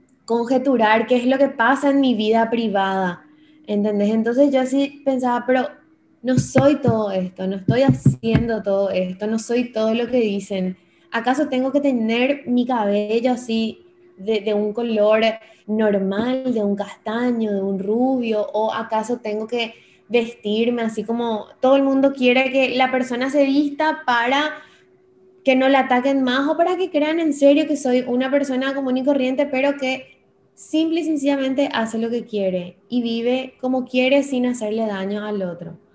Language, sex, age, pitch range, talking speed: Spanish, female, 20-39, 220-275 Hz, 170 wpm